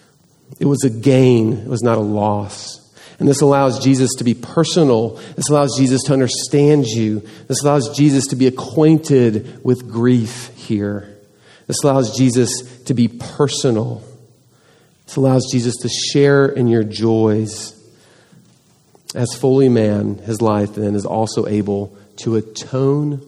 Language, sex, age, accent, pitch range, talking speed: English, male, 40-59, American, 110-140 Hz, 145 wpm